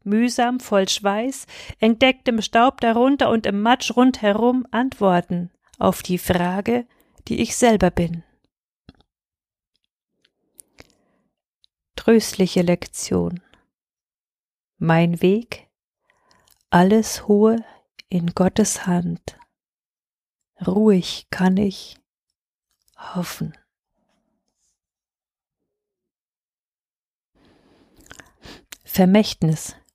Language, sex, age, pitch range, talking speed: German, female, 40-59, 185-240 Hz, 65 wpm